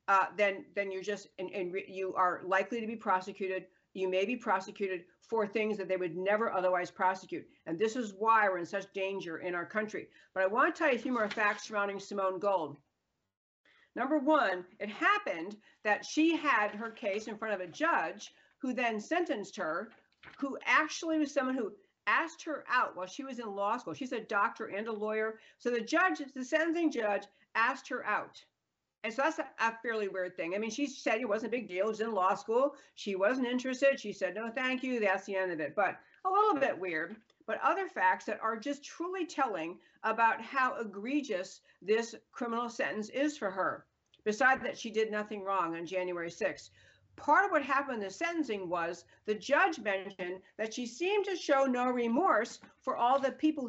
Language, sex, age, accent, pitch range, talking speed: English, female, 50-69, American, 190-265 Hz, 205 wpm